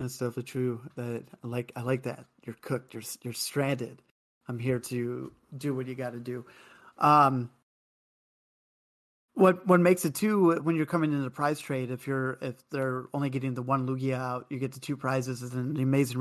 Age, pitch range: 30-49, 130-145 Hz